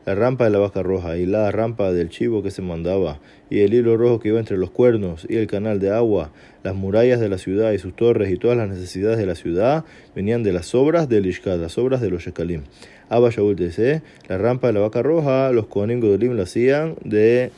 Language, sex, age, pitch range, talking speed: Spanish, male, 30-49, 95-120 Hz, 230 wpm